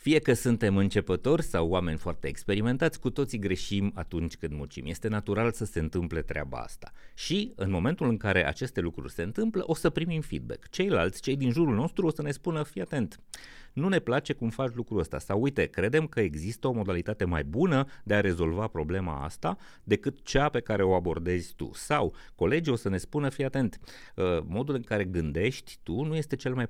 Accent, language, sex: native, Romanian, male